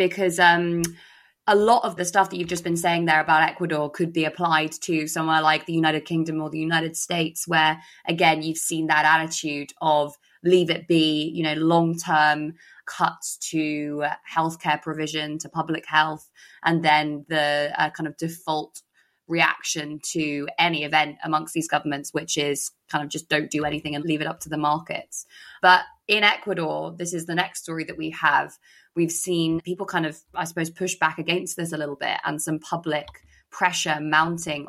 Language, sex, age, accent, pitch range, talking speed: English, female, 20-39, British, 150-170 Hz, 185 wpm